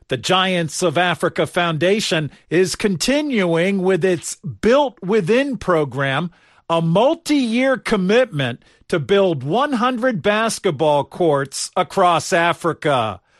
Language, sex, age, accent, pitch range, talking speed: English, male, 50-69, American, 170-220 Hz, 100 wpm